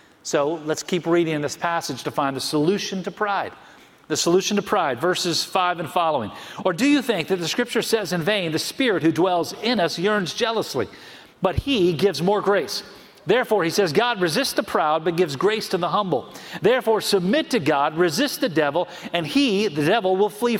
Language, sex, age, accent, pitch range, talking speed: English, male, 40-59, American, 155-210 Hz, 200 wpm